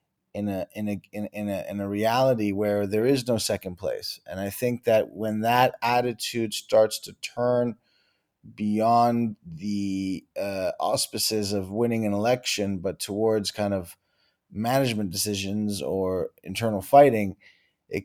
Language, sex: English, male